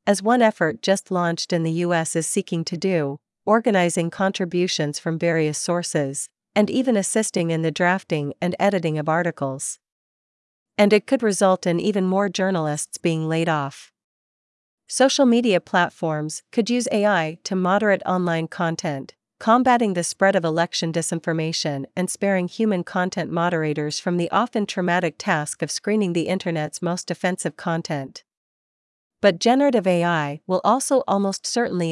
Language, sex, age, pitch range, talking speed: Vietnamese, female, 40-59, 160-200 Hz, 145 wpm